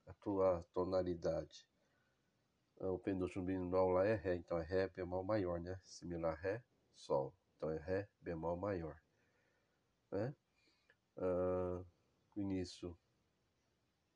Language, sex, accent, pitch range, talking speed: Portuguese, male, Brazilian, 90-105 Hz, 120 wpm